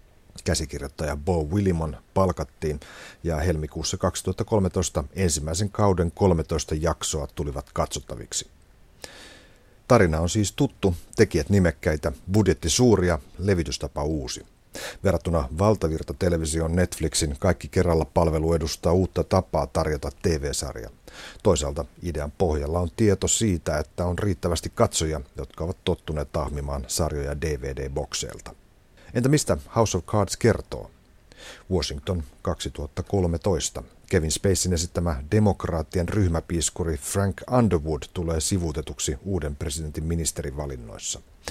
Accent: native